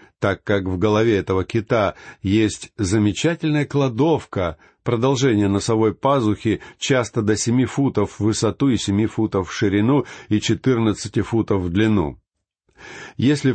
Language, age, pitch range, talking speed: Russian, 50-69, 100-130 Hz, 130 wpm